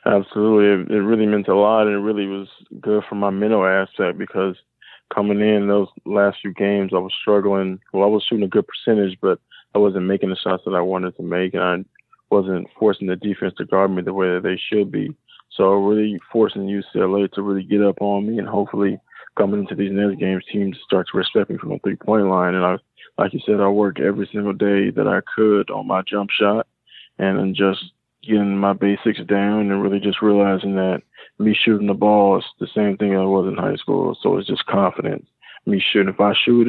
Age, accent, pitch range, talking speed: 20-39, American, 95-105 Hz, 220 wpm